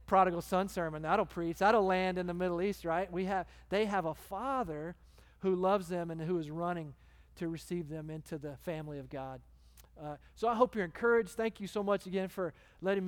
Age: 40-59